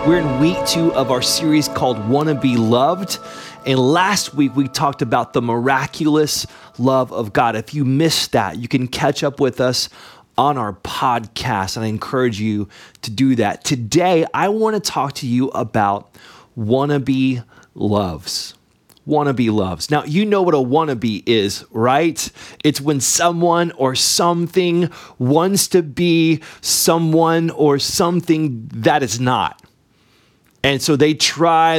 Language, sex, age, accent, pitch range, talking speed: English, male, 30-49, American, 130-165 Hz, 150 wpm